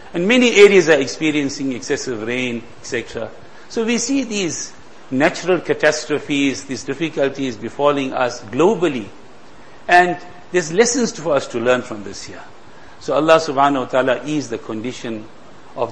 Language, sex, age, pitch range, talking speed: English, male, 50-69, 130-170 Hz, 145 wpm